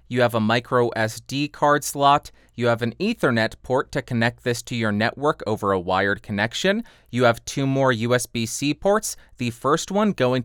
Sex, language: male, English